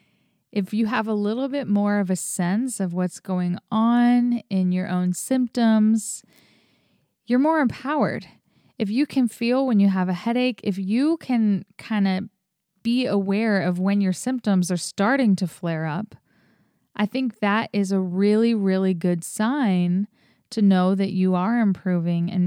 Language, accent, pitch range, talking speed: English, American, 185-215 Hz, 165 wpm